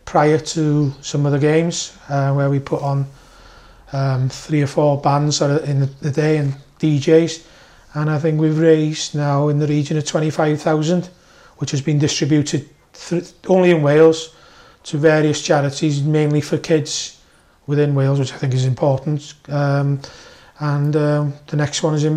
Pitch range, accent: 140-155 Hz, British